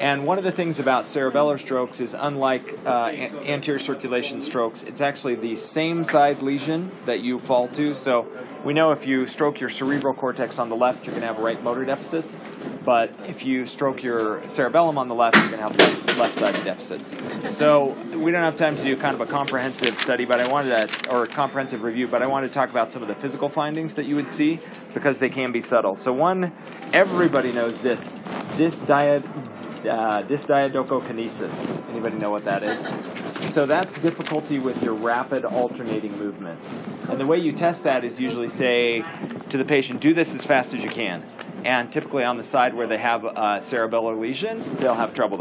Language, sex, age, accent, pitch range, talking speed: English, male, 30-49, American, 125-155 Hz, 200 wpm